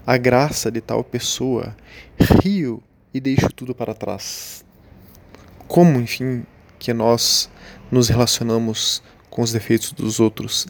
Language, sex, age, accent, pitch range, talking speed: Portuguese, male, 20-39, Brazilian, 105-125 Hz, 125 wpm